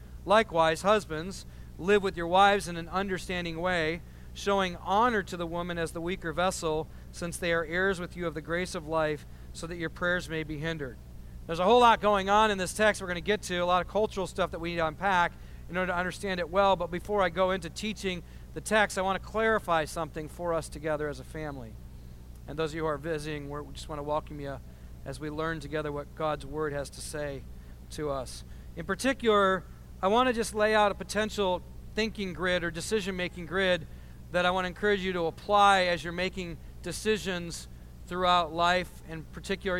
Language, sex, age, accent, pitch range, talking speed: English, male, 40-59, American, 160-190 Hz, 215 wpm